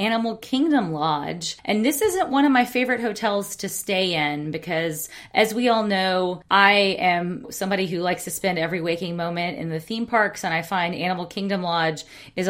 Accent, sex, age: American, female, 30-49